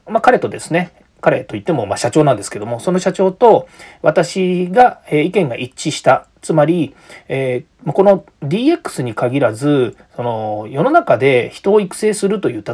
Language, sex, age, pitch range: Japanese, male, 40-59, 130-215 Hz